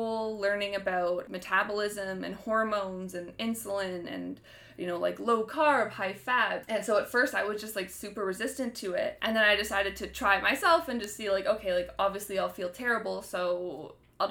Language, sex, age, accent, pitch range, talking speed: English, female, 20-39, American, 200-245 Hz, 190 wpm